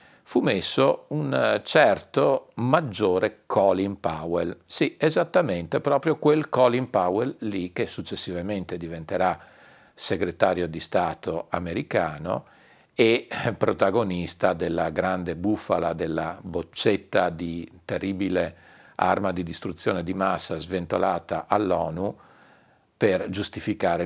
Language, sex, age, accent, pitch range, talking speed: Italian, male, 50-69, native, 90-125 Hz, 95 wpm